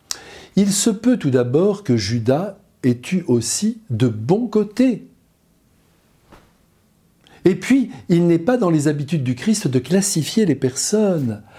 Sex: male